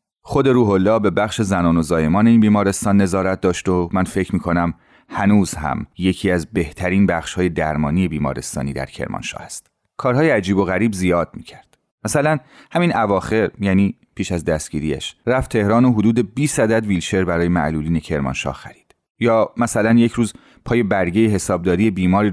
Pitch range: 80-100 Hz